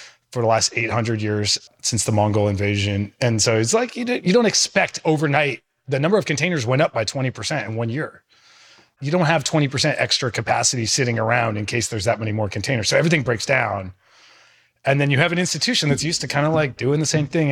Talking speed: 220 wpm